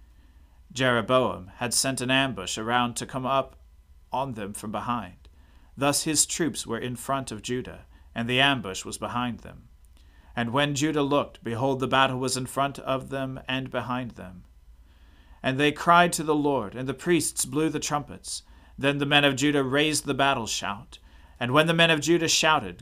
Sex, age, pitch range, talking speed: male, 40-59, 95-140 Hz, 185 wpm